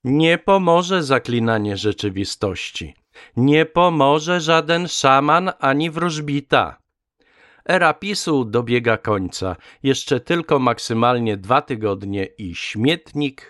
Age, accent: 50-69, native